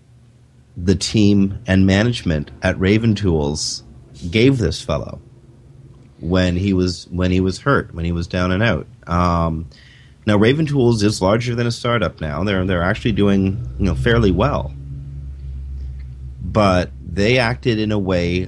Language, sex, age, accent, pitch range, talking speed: English, male, 30-49, American, 90-115 Hz, 155 wpm